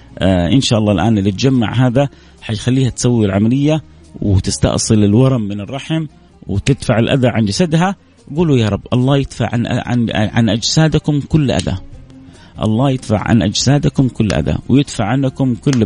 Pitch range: 110-140 Hz